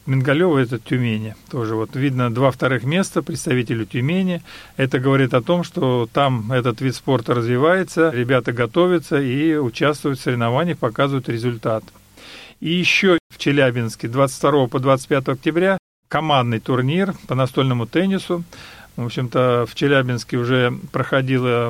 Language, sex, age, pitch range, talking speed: Russian, male, 50-69, 130-160 Hz, 135 wpm